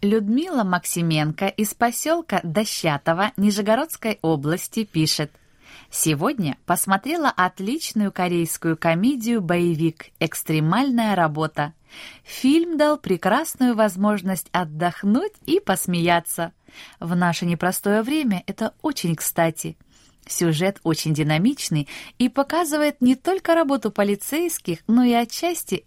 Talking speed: 95 wpm